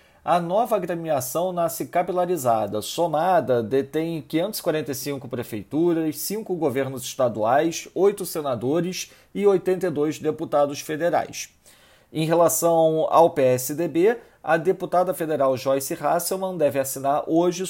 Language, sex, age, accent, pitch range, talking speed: Portuguese, male, 40-59, Brazilian, 145-180 Hz, 100 wpm